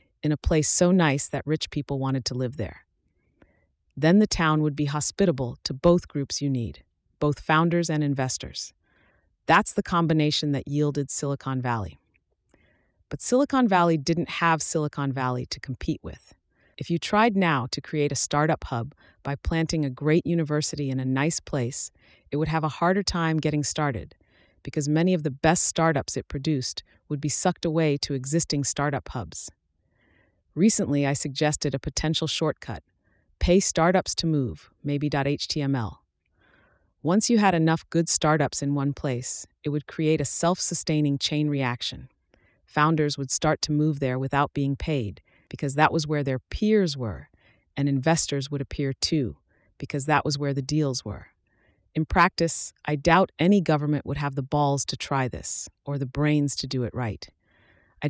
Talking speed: 165 wpm